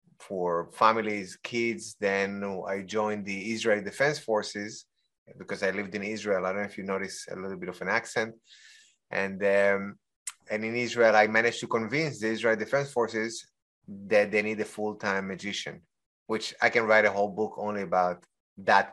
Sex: male